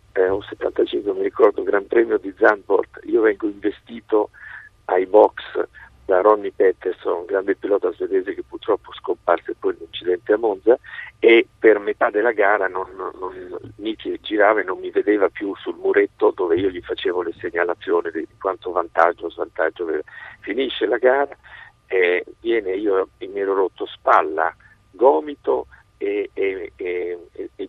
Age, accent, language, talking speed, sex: 50-69, native, Italian, 155 wpm, male